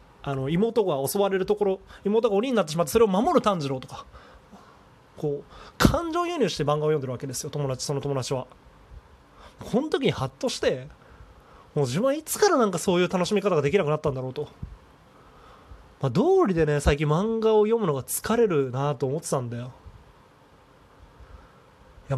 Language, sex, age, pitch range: Japanese, male, 20-39, 150-240 Hz